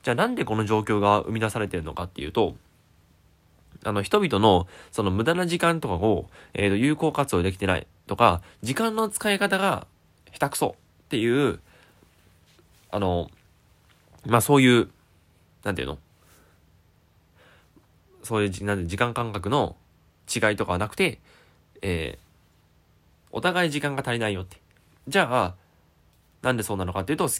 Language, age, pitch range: Japanese, 20-39, 85-125 Hz